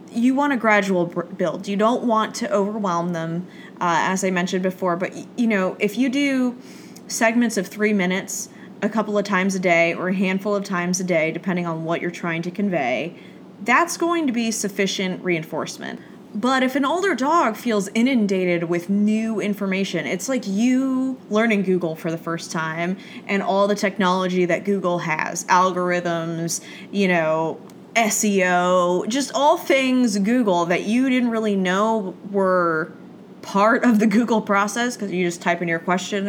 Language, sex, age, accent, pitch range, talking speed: English, female, 20-39, American, 175-230 Hz, 170 wpm